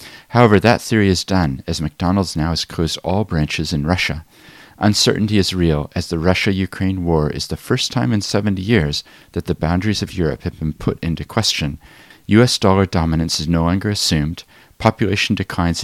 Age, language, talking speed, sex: 40-59, English, 180 wpm, male